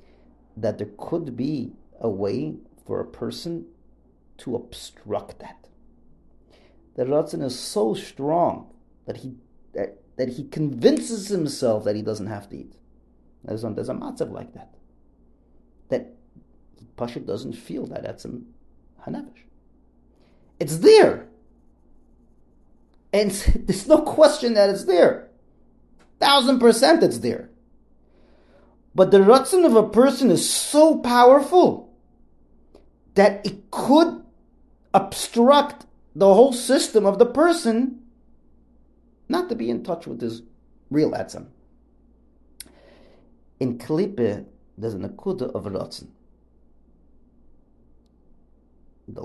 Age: 40-59